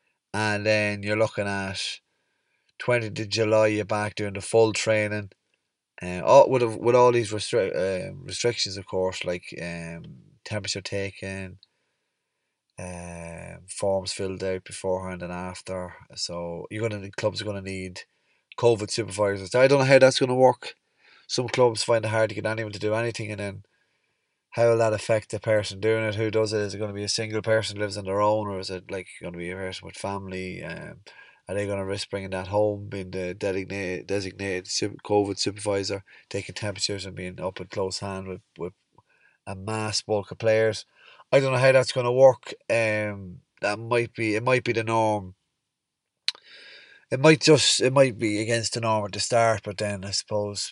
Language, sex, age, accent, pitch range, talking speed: English, male, 20-39, Irish, 95-110 Hz, 200 wpm